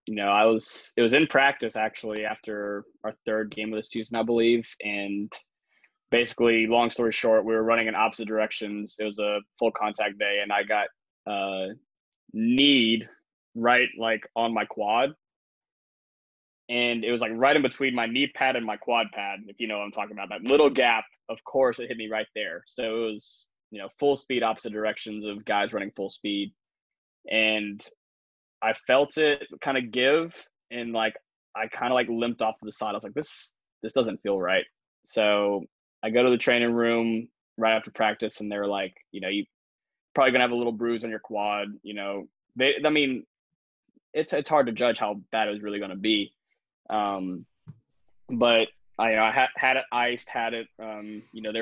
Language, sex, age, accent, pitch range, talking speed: English, male, 20-39, American, 105-120 Hz, 200 wpm